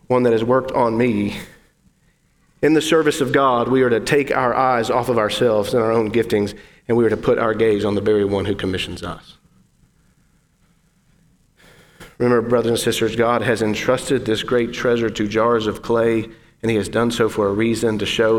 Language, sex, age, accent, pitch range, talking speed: English, male, 40-59, American, 110-130 Hz, 200 wpm